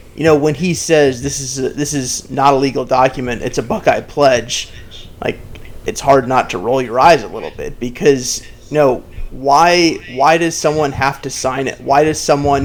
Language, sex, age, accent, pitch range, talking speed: English, male, 30-49, American, 130-150 Hz, 210 wpm